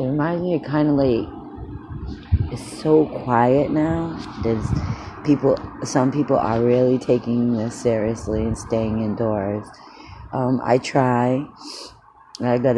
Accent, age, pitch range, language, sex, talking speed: American, 40-59, 115-145 Hz, English, female, 130 wpm